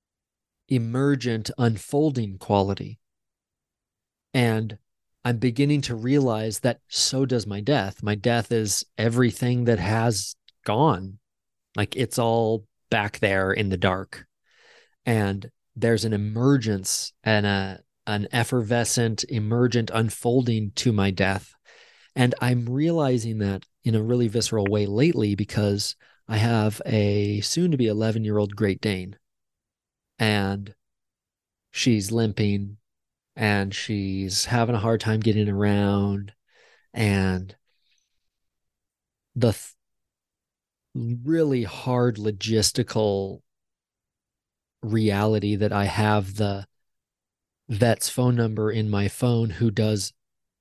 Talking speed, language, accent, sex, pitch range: 110 wpm, English, American, male, 100-120 Hz